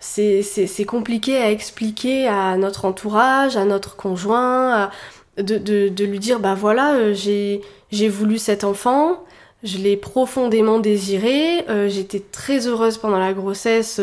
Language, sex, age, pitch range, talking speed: French, female, 20-39, 200-240 Hz, 165 wpm